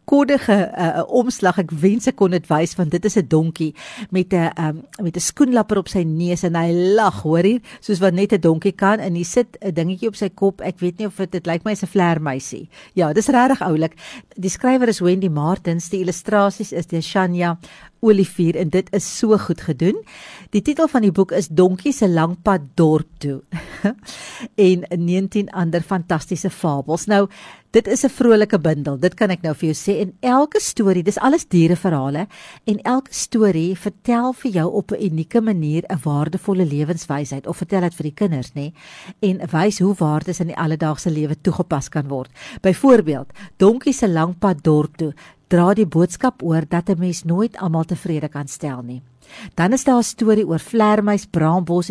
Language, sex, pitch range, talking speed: English, female, 165-210 Hz, 195 wpm